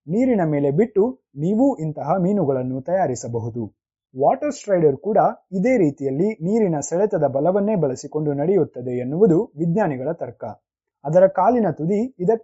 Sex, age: male, 30-49